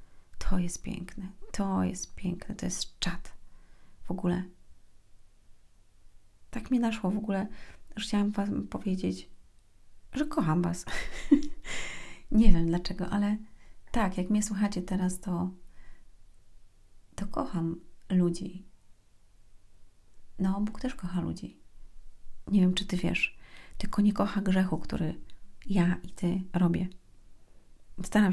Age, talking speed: 30-49, 115 wpm